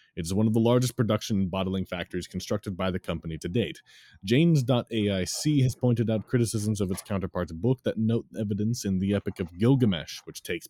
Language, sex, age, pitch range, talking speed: English, male, 30-49, 85-110 Hz, 190 wpm